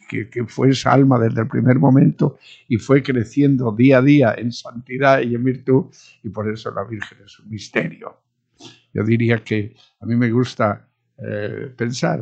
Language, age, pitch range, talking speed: English, 60-79, 105-130 Hz, 180 wpm